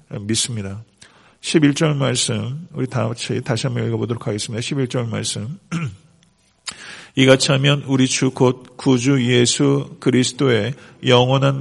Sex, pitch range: male, 120-150 Hz